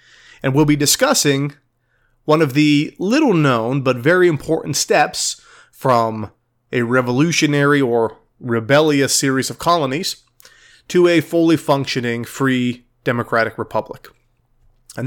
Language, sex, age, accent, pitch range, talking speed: English, male, 30-49, American, 120-150 Hz, 110 wpm